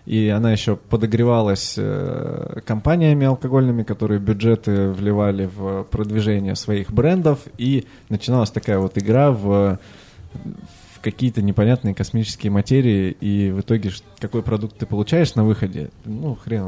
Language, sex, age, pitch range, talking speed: Russian, male, 20-39, 100-125 Hz, 125 wpm